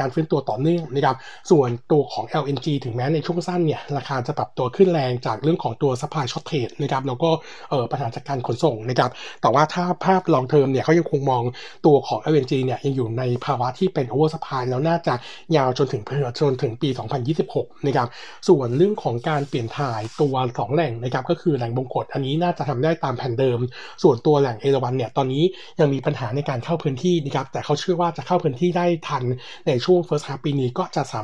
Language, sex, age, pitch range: Thai, male, 60-79, 130-160 Hz